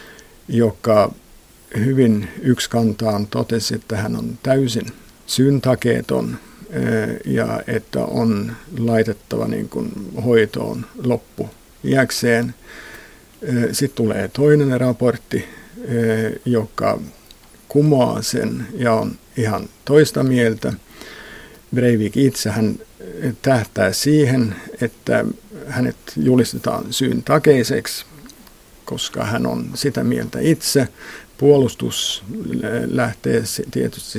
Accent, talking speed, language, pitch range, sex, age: native, 85 wpm, Finnish, 110-135 Hz, male, 60-79